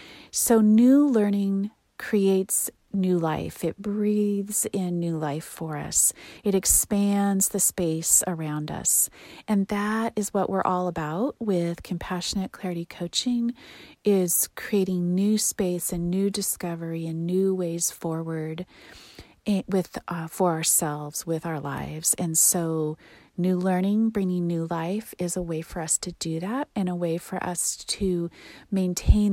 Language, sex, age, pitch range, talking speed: English, female, 40-59, 170-210 Hz, 145 wpm